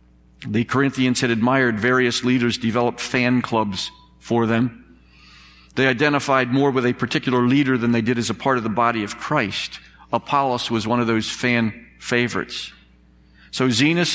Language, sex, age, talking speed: English, male, 50-69, 160 wpm